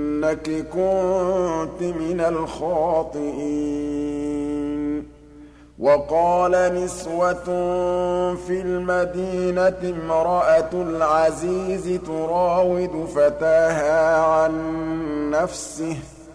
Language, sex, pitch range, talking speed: Arabic, male, 145-180 Hz, 50 wpm